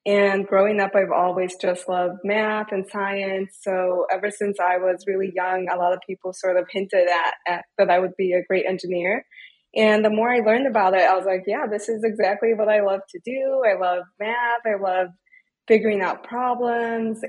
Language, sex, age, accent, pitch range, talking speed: English, female, 20-39, American, 185-220 Hz, 210 wpm